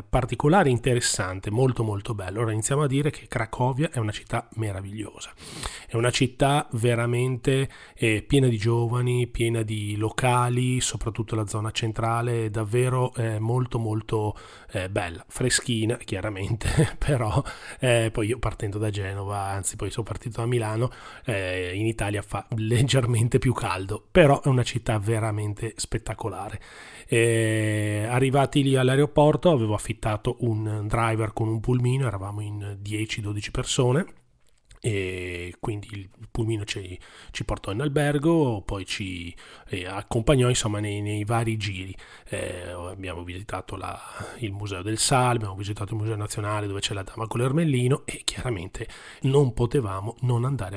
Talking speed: 145 wpm